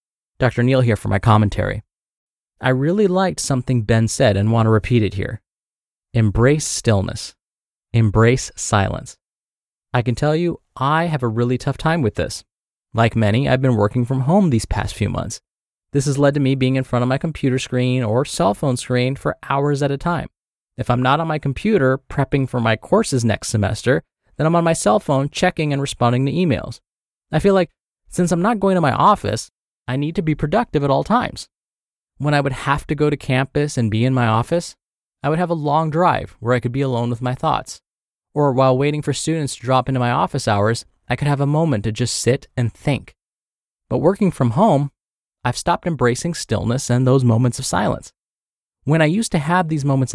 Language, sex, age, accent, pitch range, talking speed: English, male, 20-39, American, 120-155 Hz, 210 wpm